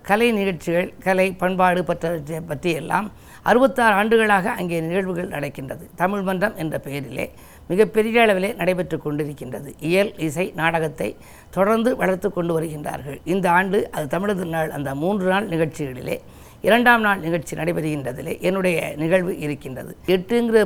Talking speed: 130 wpm